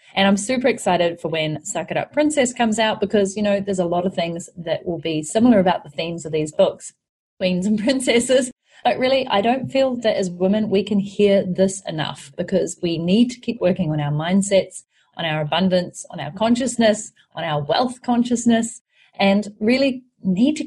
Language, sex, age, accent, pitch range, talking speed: English, female, 30-49, Australian, 165-220 Hz, 200 wpm